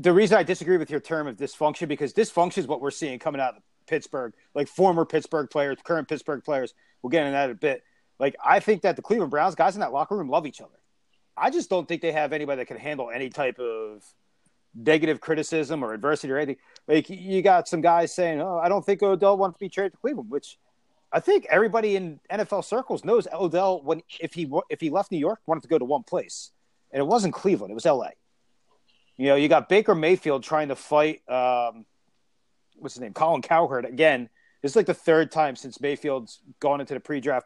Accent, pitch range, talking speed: American, 145-200 Hz, 225 wpm